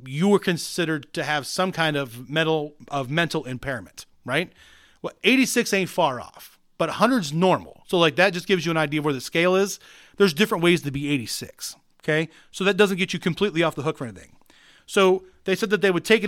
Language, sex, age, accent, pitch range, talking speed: English, male, 30-49, American, 150-190 Hz, 220 wpm